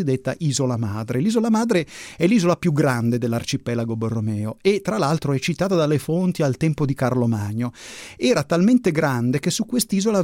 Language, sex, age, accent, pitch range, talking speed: Italian, male, 30-49, native, 125-165 Hz, 170 wpm